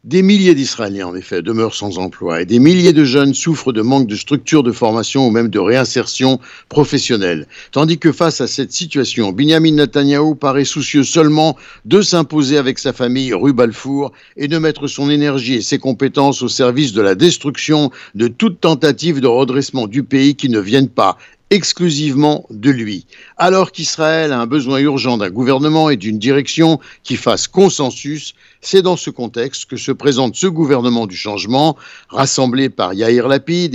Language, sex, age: Italian, male, 60-79